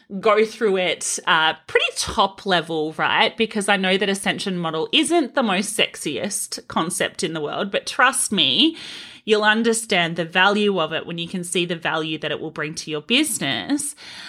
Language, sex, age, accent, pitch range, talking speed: English, female, 30-49, Australian, 180-255 Hz, 185 wpm